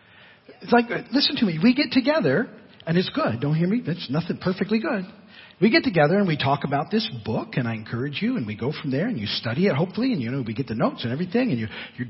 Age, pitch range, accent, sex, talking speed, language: 40-59, 160-240 Hz, American, male, 260 wpm, English